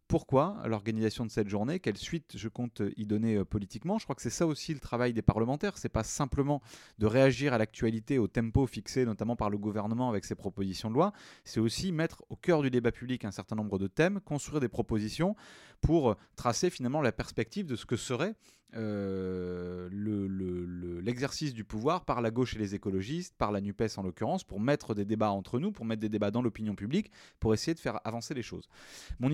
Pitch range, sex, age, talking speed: 105-140 Hz, male, 30-49, 210 wpm